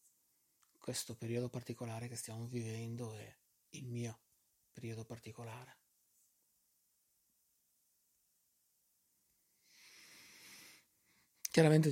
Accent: native